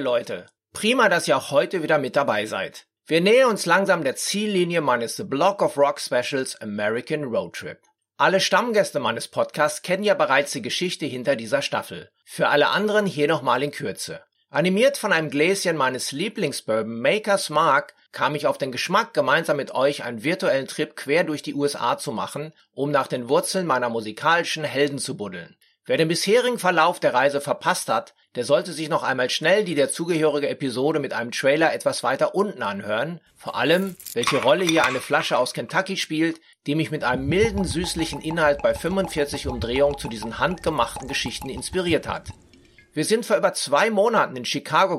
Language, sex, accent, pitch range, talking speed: German, male, German, 140-190 Hz, 185 wpm